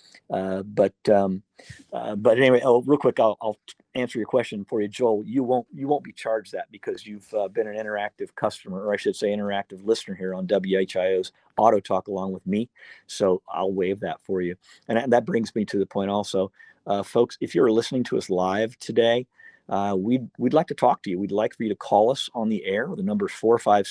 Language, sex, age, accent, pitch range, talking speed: English, male, 50-69, American, 100-130 Hz, 230 wpm